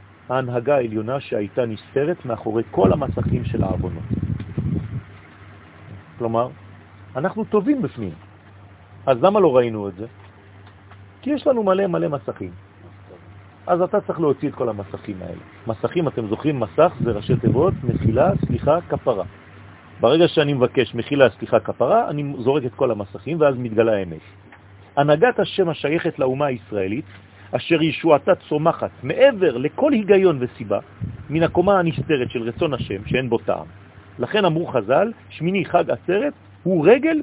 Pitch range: 100-165 Hz